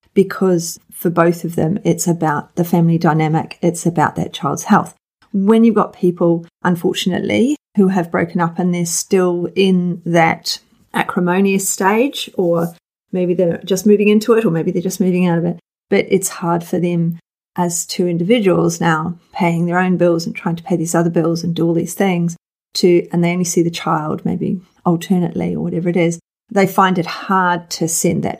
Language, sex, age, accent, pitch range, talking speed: English, female, 30-49, Australian, 170-195 Hz, 190 wpm